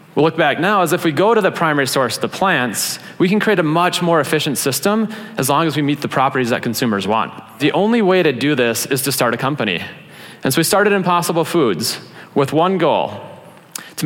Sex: male